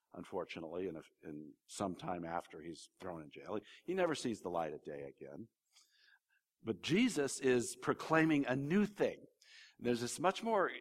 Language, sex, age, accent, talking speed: English, male, 50-69, American, 165 wpm